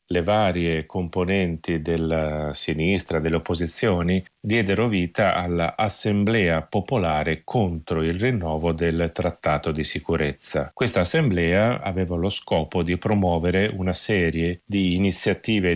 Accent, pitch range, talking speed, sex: native, 80-100 Hz, 110 wpm, male